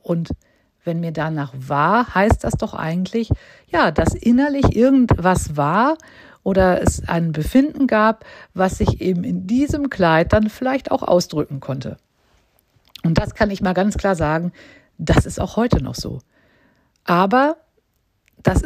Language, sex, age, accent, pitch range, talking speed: German, female, 50-69, German, 165-220 Hz, 150 wpm